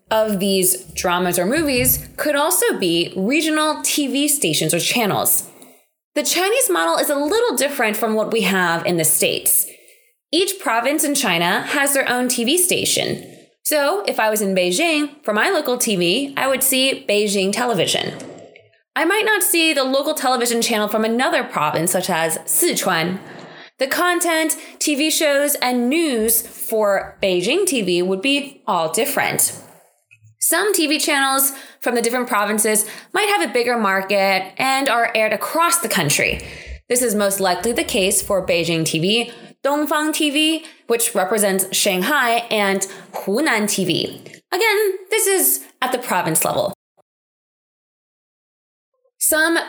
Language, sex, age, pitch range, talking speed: English, female, 20-39, 195-305 Hz, 145 wpm